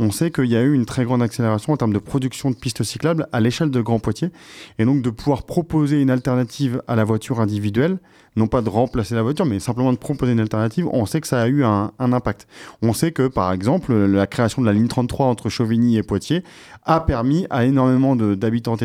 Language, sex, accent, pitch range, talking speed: French, male, French, 110-140 Hz, 235 wpm